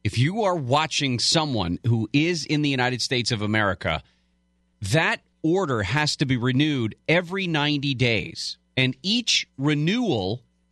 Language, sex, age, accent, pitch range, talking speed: English, male, 40-59, American, 95-145 Hz, 140 wpm